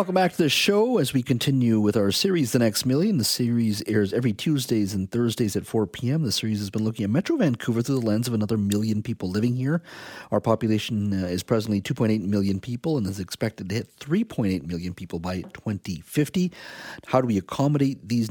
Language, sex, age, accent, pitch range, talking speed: English, male, 40-59, American, 95-125 Hz, 205 wpm